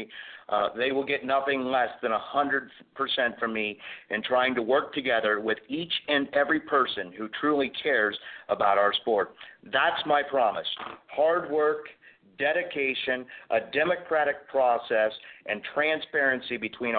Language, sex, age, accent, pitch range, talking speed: English, male, 50-69, American, 120-145 Hz, 135 wpm